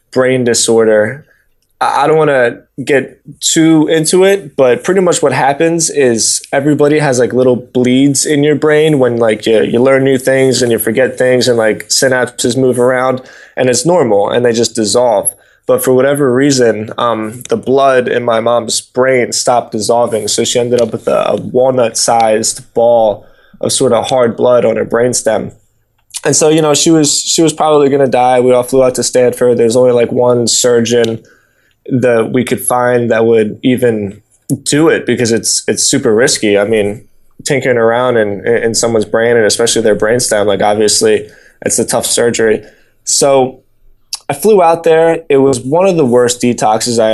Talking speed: 185 wpm